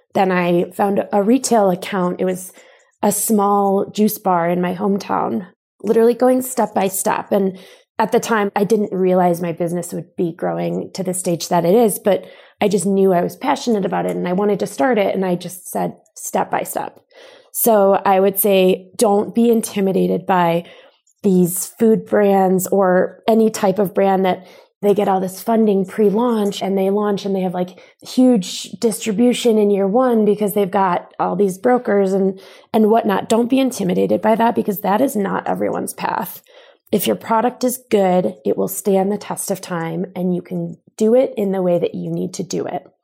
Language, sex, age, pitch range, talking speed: English, female, 20-39, 185-225 Hz, 195 wpm